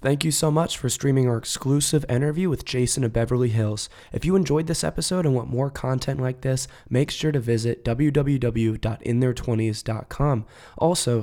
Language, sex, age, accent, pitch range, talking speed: English, male, 20-39, American, 115-140 Hz, 165 wpm